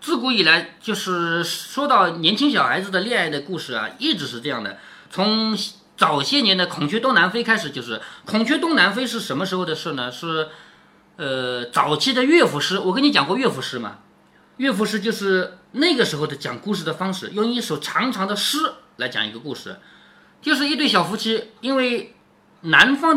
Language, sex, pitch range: Chinese, male, 170-260 Hz